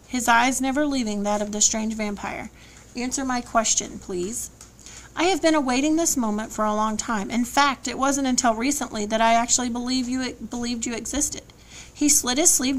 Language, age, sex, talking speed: English, 40-59, female, 185 wpm